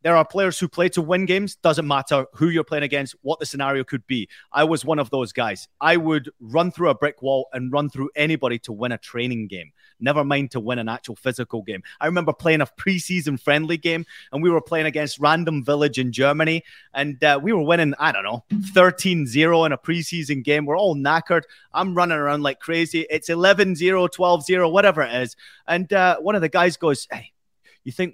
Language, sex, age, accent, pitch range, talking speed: English, male, 30-49, British, 140-185 Hz, 220 wpm